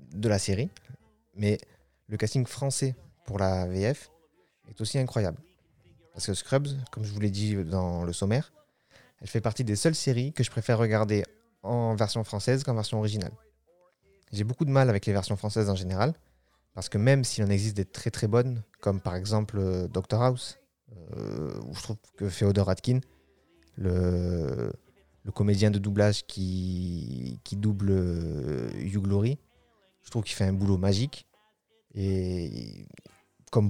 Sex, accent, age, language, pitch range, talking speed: male, French, 30-49, French, 95-120 Hz, 160 wpm